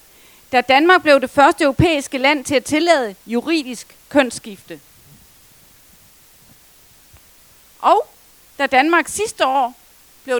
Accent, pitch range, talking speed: native, 235-315 Hz, 105 wpm